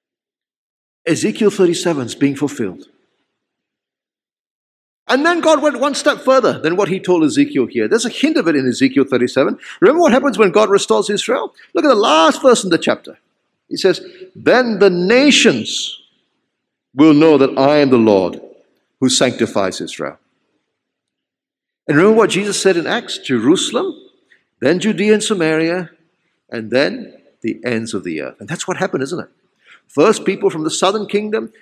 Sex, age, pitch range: male, 50-69, 185-265 Hz